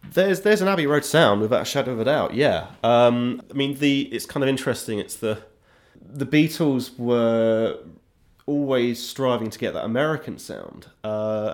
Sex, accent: male, British